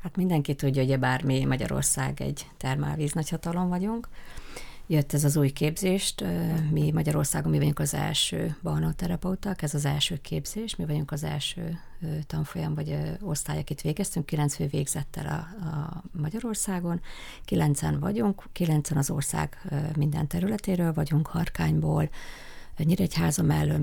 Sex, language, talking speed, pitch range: female, Hungarian, 130 wpm, 145-170 Hz